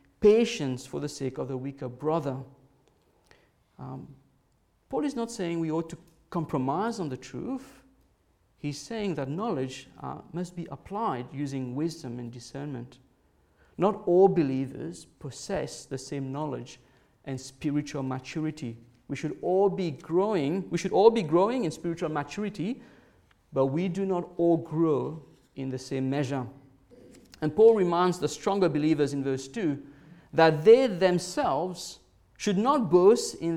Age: 50-69